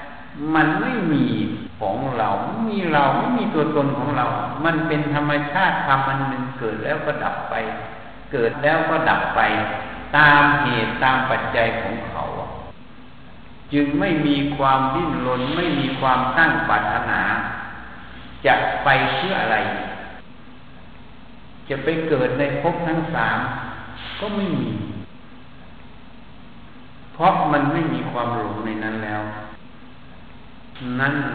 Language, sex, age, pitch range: Thai, male, 60-79, 115-145 Hz